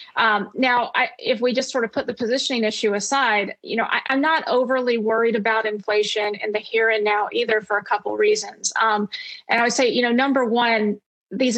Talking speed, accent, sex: 220 wpm, American, female